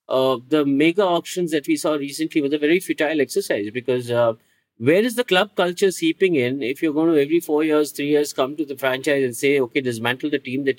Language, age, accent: English, 50-69, Indian